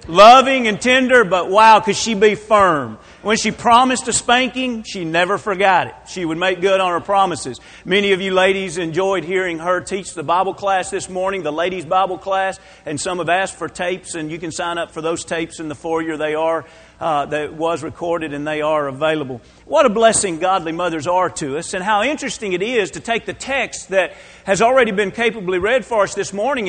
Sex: male